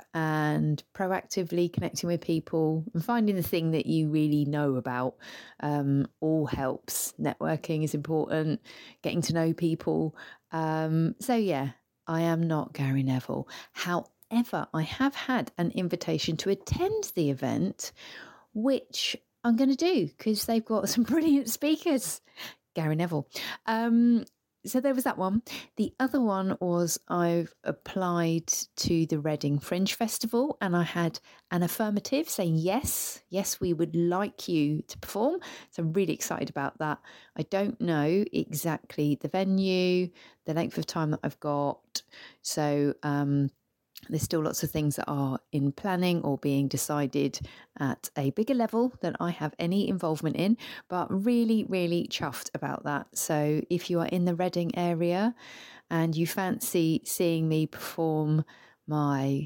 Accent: British